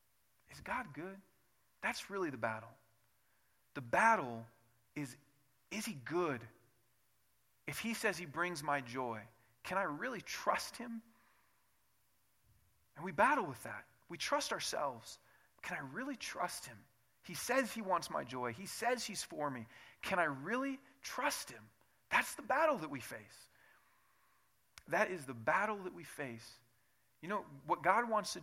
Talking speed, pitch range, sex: 155 wpm, 115-190 Hz, male